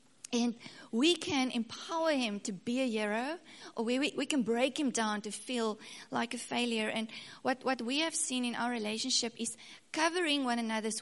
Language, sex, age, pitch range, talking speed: English, female, 30-49, 220-265 Hz, 190 wpm